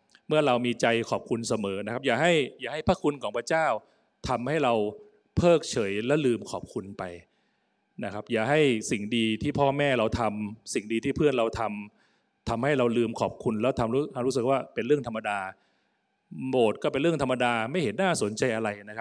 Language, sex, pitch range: Thai, male, 115-155 Hz